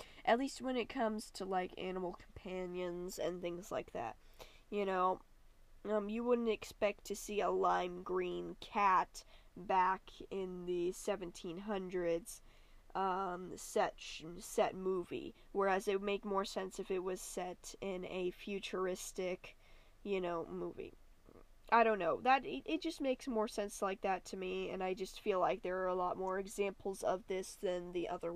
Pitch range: 185-220 Hz